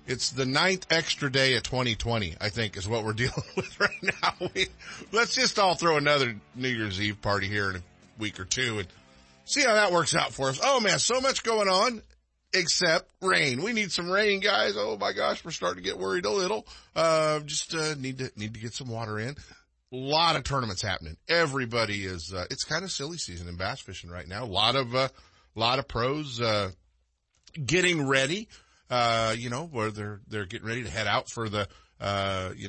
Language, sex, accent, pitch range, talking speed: English, male, American, 105-165 Hz, 215 wpm